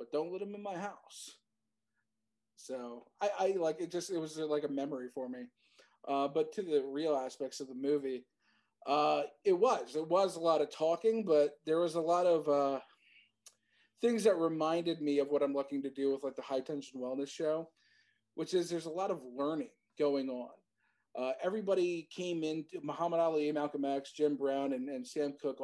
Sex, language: male, English